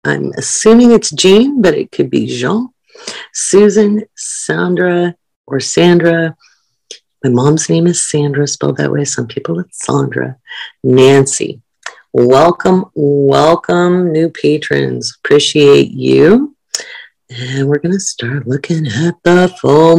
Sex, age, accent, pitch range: female, 40-59, American, 125-175 Hz